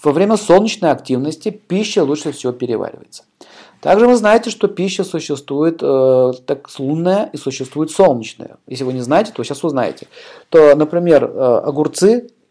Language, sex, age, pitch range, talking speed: Russian, male, 40-59, 140-190 Hz, 155 wpm